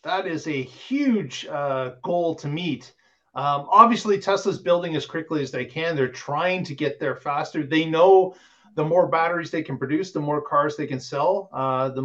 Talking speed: 195 wpm